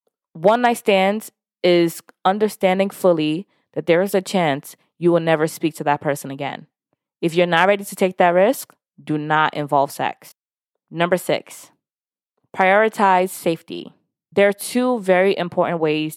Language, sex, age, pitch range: English, female, 20-39, 150-195 Hz